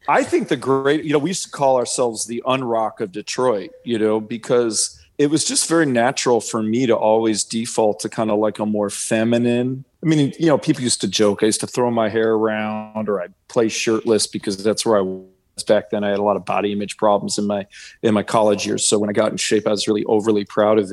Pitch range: 115-175 Hz